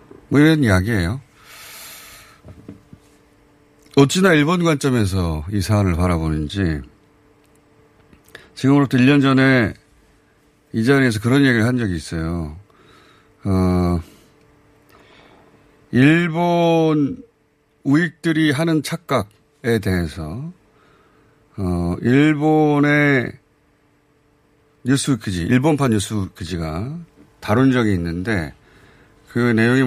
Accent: native